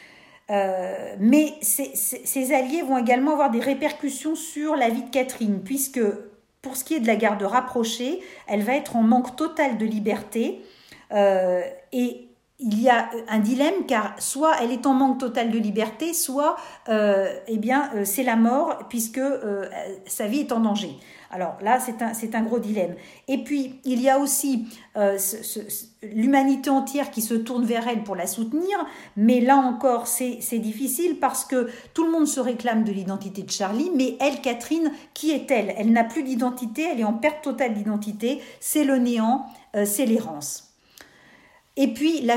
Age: 50-69